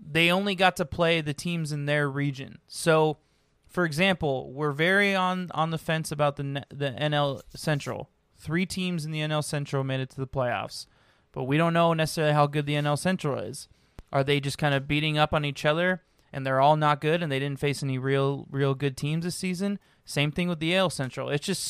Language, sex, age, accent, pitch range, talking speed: English, male, 20-39, American, 135-180 Hz, 220 wpm